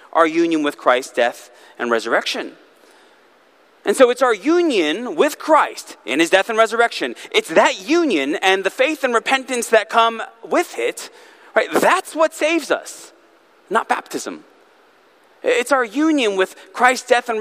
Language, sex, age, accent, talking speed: English, male, 30-49, American, 155 wpm